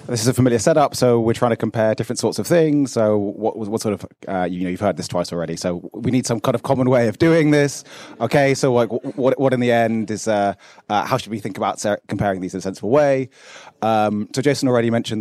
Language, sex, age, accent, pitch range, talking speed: English, male, 30-49, British, 105-130 Hz, 260 wpm